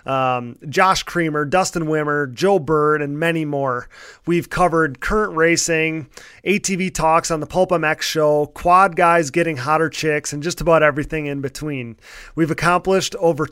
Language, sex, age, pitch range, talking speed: English, male, 30-49, 150-175 Hz, 155 wpm